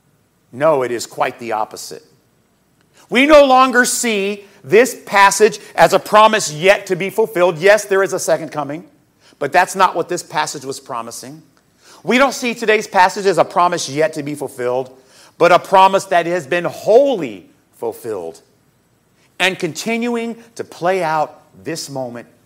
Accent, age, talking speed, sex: American, 40-59, 160 wpm, male